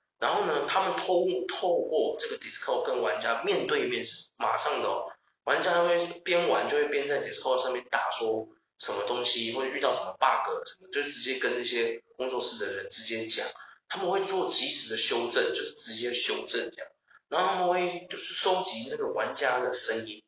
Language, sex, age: Chinese, male, 30-49